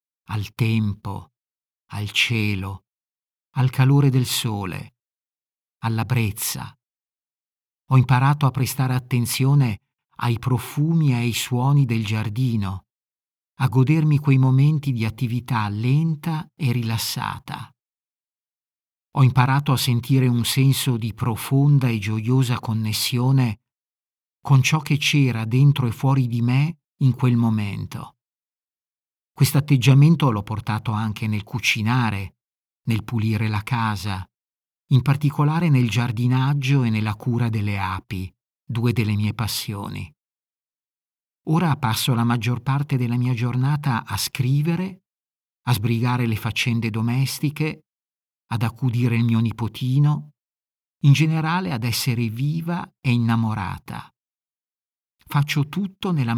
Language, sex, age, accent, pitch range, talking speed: Italian, male, 50-69, native, 110-140 Hz, 115 wpm